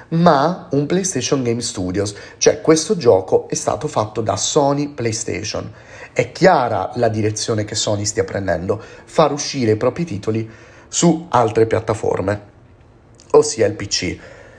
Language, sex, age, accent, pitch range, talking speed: Italian, male, 30-49, native, 105-120 Hz, 135 wpm